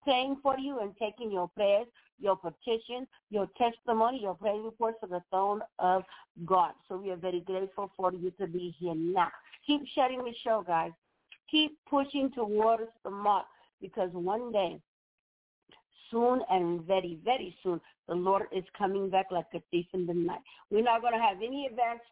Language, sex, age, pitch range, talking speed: English, female, 50-69, 185-230 Hz, 180 wpm